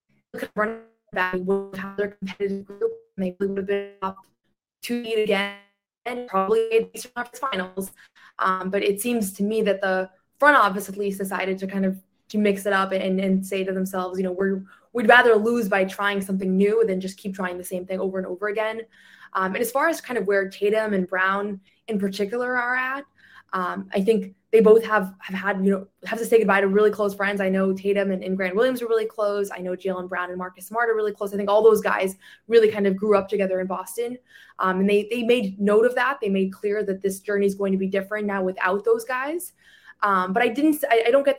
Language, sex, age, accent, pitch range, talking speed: English, female, 20-39, American, 190-220 Hz, 235 wpm